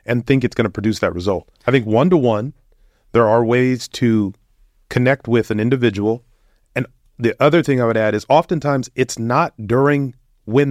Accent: American